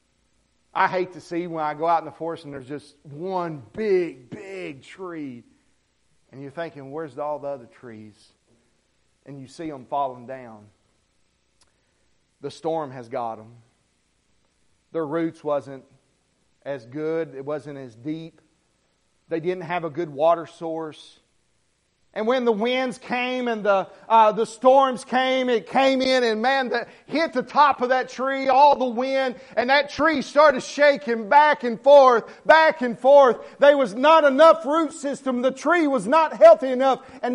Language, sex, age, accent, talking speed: English, male, 40-59, American, 165 wpm